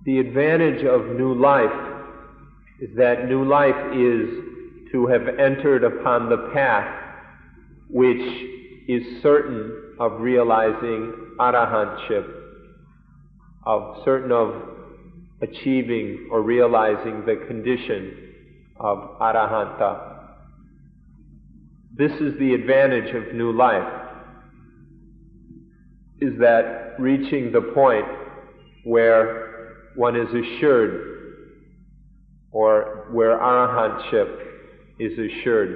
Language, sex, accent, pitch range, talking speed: English, male, American, 110-140 Hz, 90 wpm